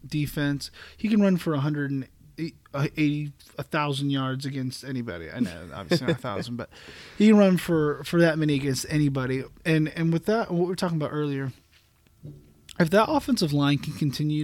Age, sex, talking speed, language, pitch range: 30-49, male, 190 wpm, English, 140-175 Hz